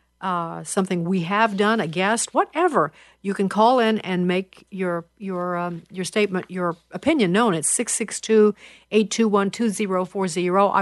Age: 50-69